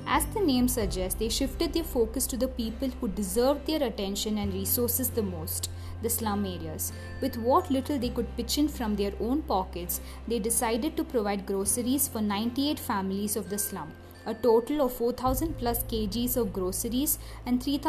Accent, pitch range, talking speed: Indian, 205-270 Hz, 175 wpm